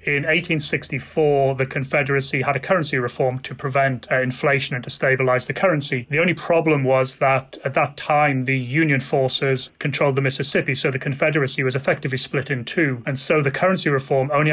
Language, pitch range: English, 130-150 Hz